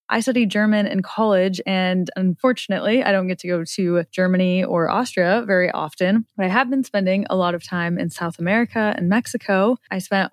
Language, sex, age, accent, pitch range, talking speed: English, female, 20-39, American, 180-220 Hz, 200 wpm